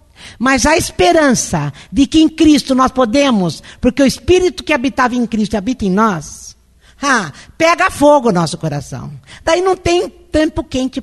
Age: 50-69